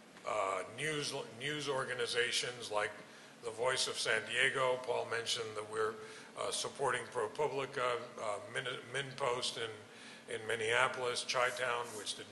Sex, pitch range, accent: male, 120-185 Hz, American